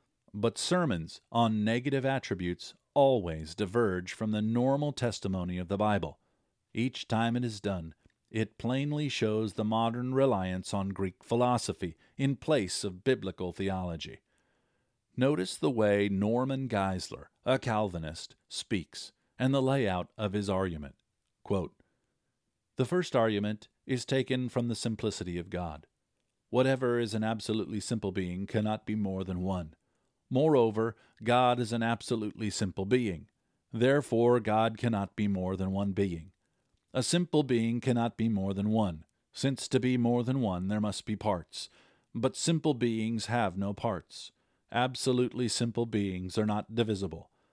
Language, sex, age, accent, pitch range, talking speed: English, male, 50-69, American, 100-125 Hz, 145 wpm